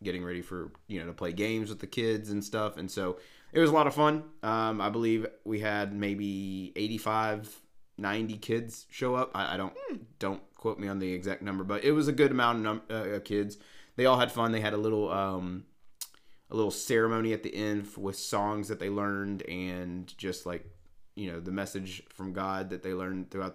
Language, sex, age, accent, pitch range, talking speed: English, male, 30-49, American, 95-115 Hz, 215 wpm